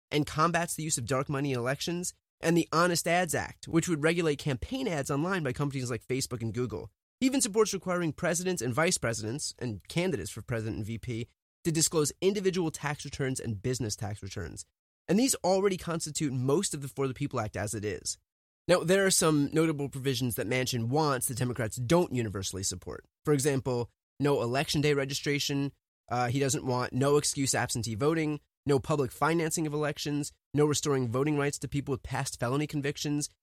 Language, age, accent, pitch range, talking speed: English, 20-39, American, 125-165 Hz, 190 wpm